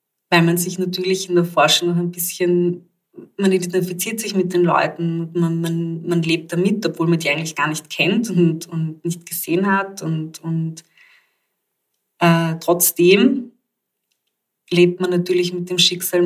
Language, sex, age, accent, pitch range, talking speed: German, female, 20-39, German, 165-180 Hz, 160 wpm